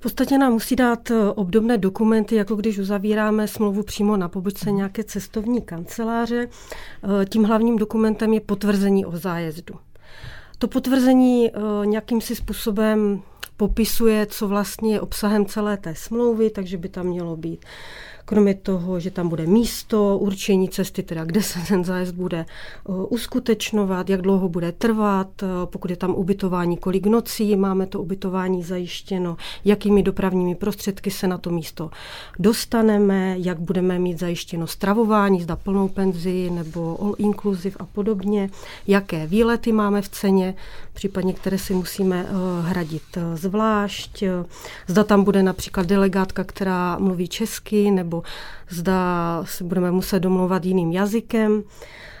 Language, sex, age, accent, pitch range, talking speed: Czech, female, 40-59, native, 185-215 Hz, 135 wpm